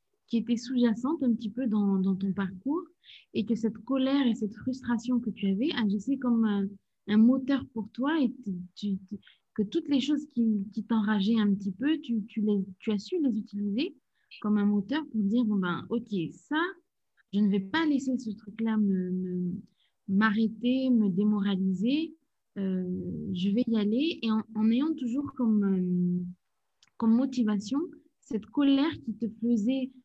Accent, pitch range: French, 195-255 Hz